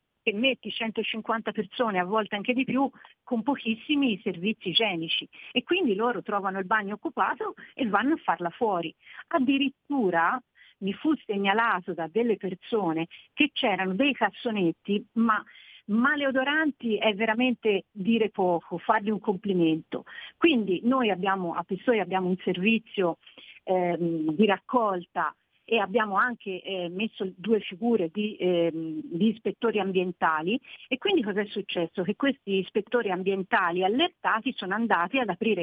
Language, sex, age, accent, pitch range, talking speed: Italian, female, 50-69, native, 185-250 Hz, 140 wpm